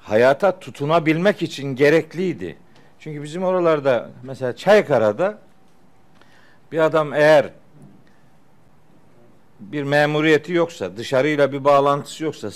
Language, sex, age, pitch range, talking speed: Turkish, male, 50-69, 150-210 Hz, 90 wpm